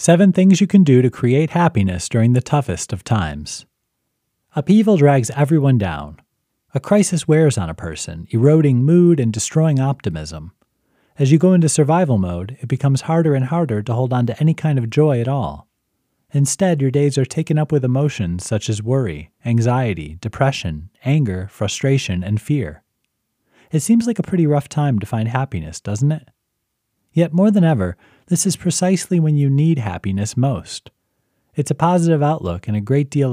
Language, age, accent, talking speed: English, 30-49, American, 175 wpm